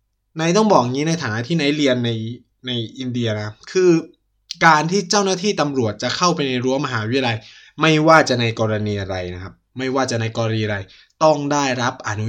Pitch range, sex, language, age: 110-155 Hz, male, Thai, 20-39